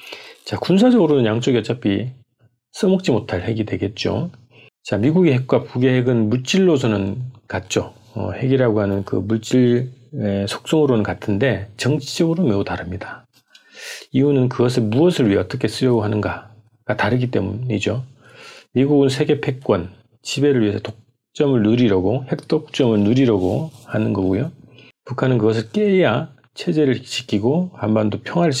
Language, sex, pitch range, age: Korean, male, 105-135 Hz, 40-59